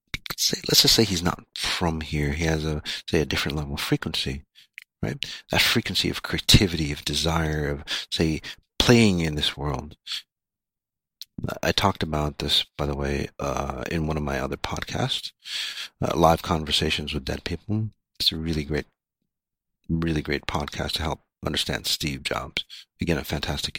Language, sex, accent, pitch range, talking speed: English, male, American, 75-95 Hz, 165 wpm